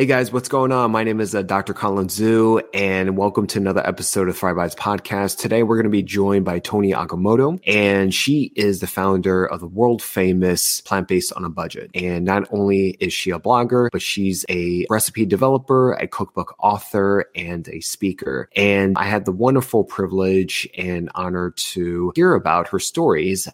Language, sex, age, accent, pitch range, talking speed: English, male, 20-39, American, 90-110 Hz, 190 wpm